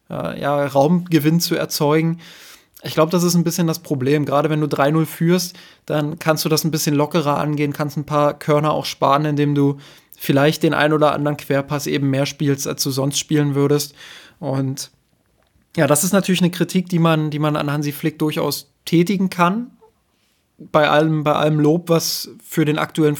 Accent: German